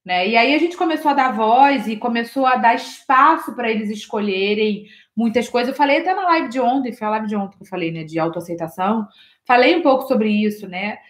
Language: Portuguese